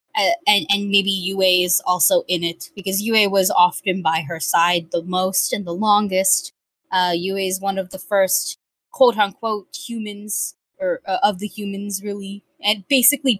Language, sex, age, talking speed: English, female, 20-39, 170 wpm